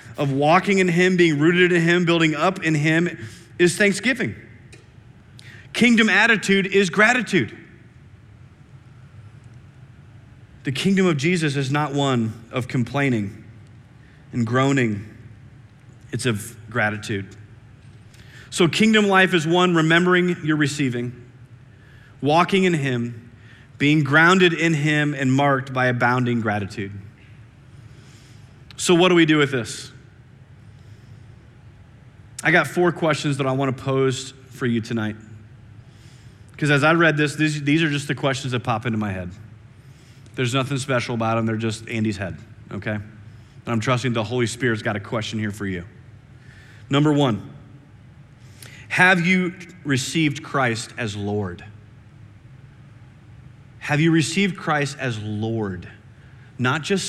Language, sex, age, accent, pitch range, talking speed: English, male, 30-49, American, 115-150 Hz, 130 wpm